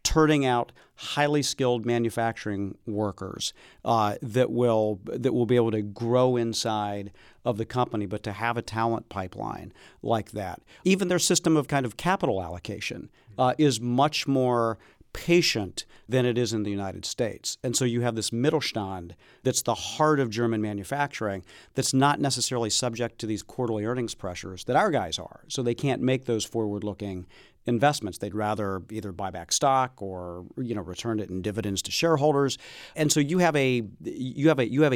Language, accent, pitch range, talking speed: English, American, 105-130 Hz, 180 wpm